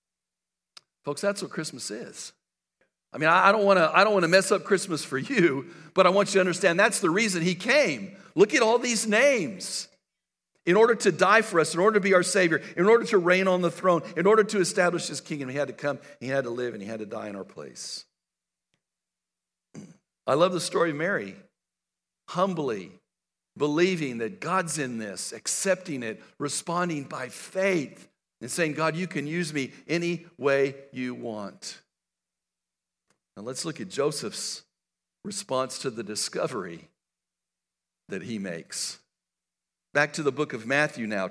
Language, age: English, 60-79